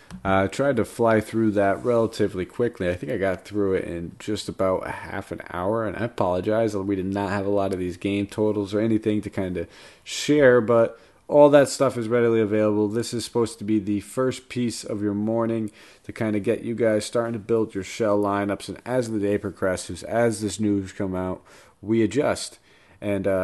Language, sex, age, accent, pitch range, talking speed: English, male, 30-49, American, 100-120 Hz, 210 wpm